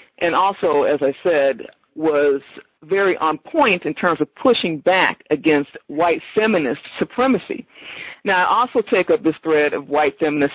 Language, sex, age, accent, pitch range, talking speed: English, female, 50-69, American, 155-195 Hz, 160 wpm